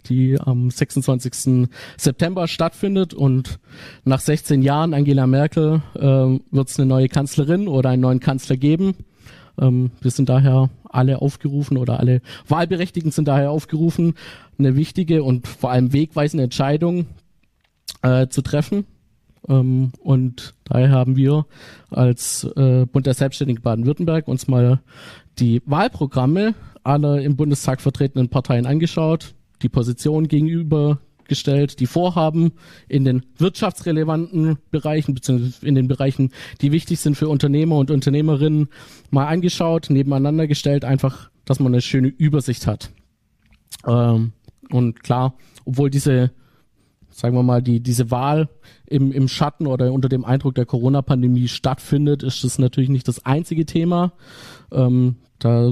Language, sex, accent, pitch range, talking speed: German, male, German, 125-150 Hz, 130 wpm